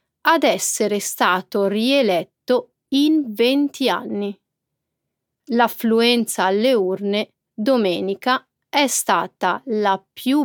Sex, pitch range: female, 200-245 Hz